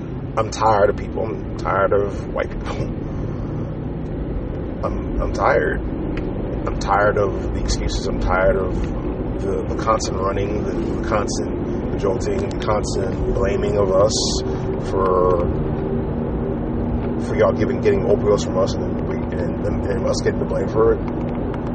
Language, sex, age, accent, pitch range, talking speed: English, male, 30-49, American, 80-105 Hz, 145 wpm